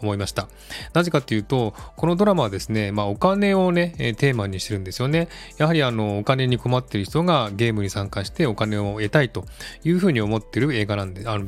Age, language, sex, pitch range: 20-39, Japanese, male, 105-145 Hz